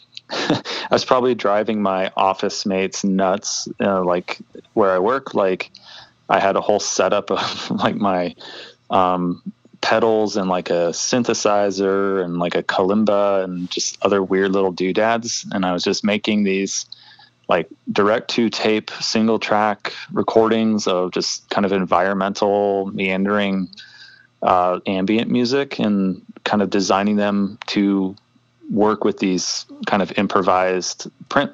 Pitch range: 95-105 Hz